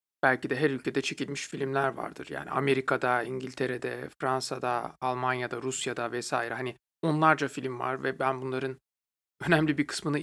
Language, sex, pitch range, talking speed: Turkish, male, 130-155 Hz, 140 wpm